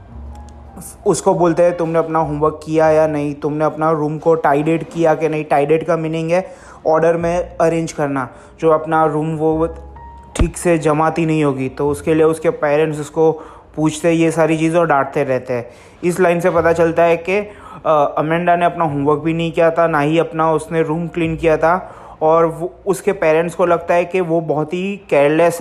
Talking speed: 190 wpm